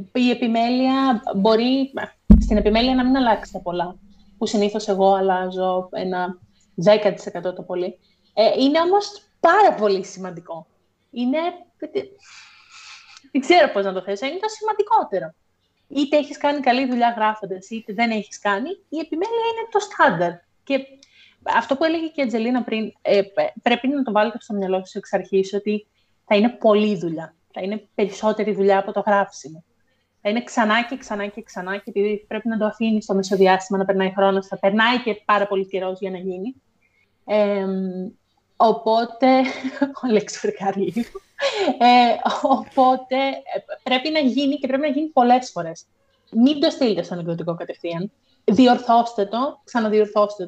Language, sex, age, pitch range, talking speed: Greek, female, 30-49, 200-270 Hz, 155 wpm